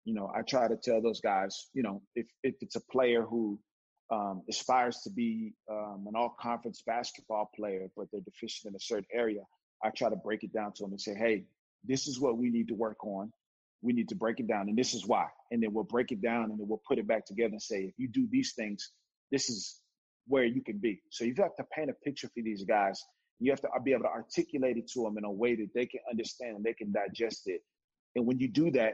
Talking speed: 255 wpm